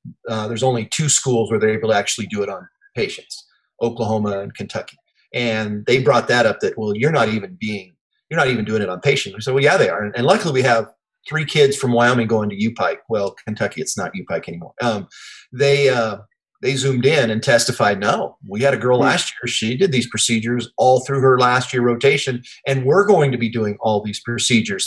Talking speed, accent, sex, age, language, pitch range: 220 wpm, American, male, 40-59, English, 110-140 Hz